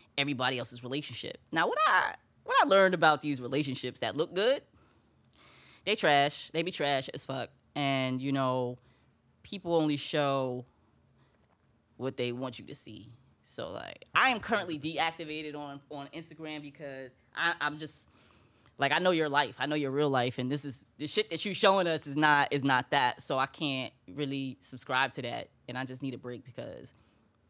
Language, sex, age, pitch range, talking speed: English, female, 10-29, 130-180 Hz, 185 wpm